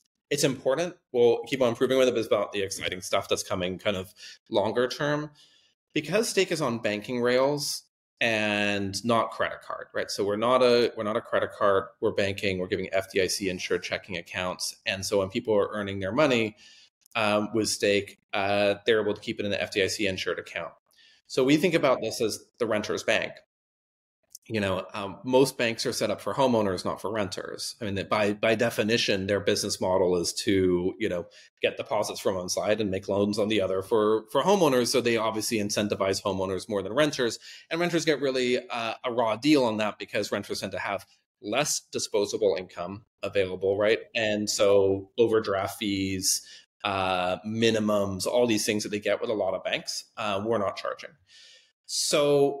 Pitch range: 100-135 Hz